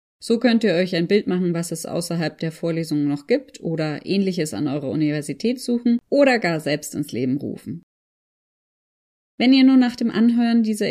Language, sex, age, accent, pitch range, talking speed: German, female, 30-49, German, 165-220 Hz, 180 wpm